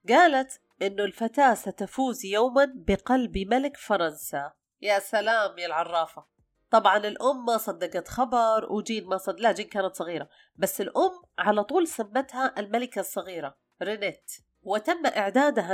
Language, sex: Arabic, female